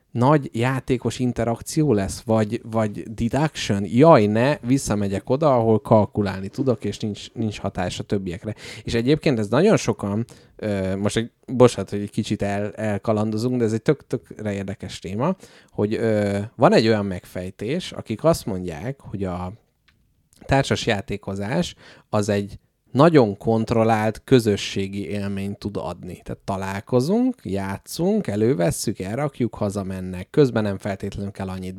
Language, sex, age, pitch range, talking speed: Hungarian, male, 30-49, 100-130 Hz, 135 wpm